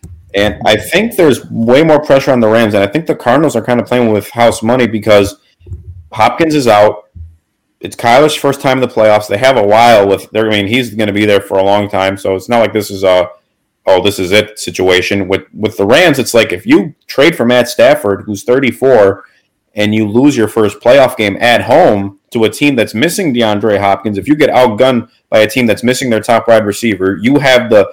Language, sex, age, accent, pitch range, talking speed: English, male, 30-49, American, 100-120 Hz, 230 wpm